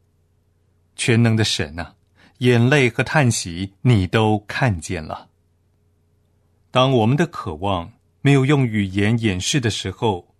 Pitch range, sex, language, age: 90-125 Hz, male, Chinese, 30-49